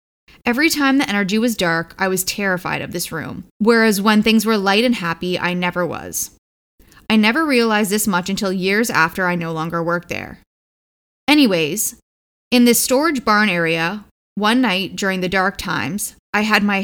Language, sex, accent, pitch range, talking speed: English, female, American, 175-225 Hz, 180 wpm